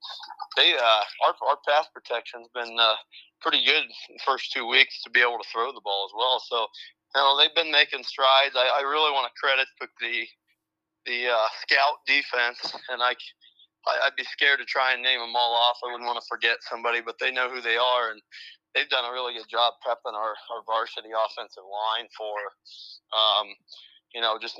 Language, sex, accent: English, male, American